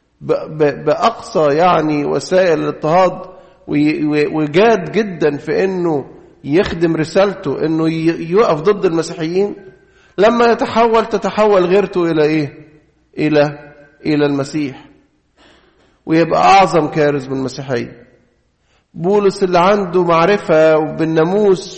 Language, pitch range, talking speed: English, 150-185 Hz, 85 wpm